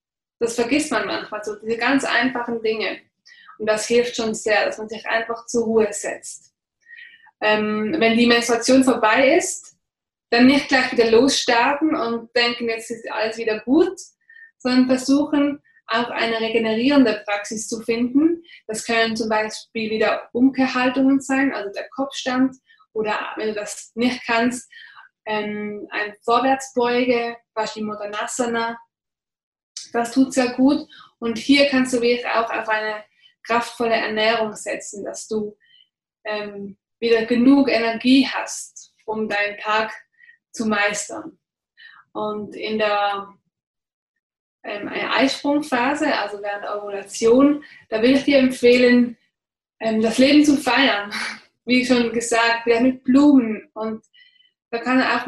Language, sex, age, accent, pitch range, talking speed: German, female, 20-39, German, 220-270 Hz, 130 wpm